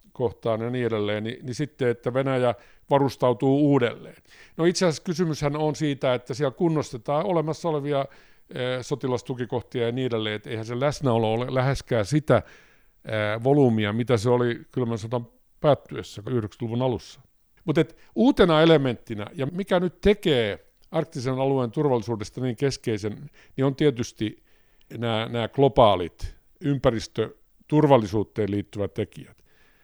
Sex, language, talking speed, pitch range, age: male, Finnish, 125 wpm, 115-150 Hz, 50-69